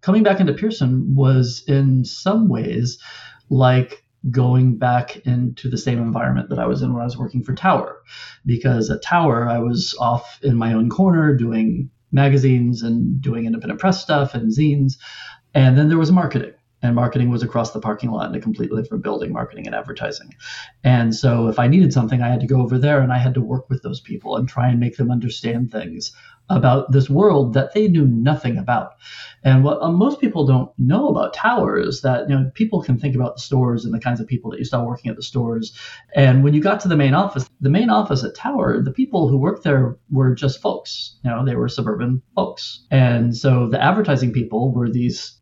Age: 40-59